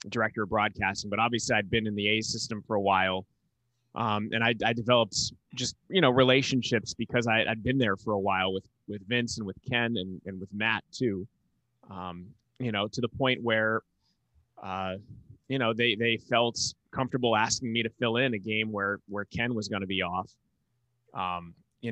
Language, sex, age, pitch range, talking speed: English, male, 20-39, 100-115 Hz, 195 wpm